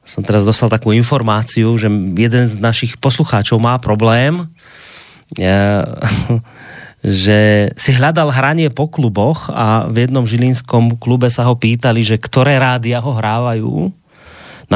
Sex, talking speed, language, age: male, 130 wpm, Slovak, 30-49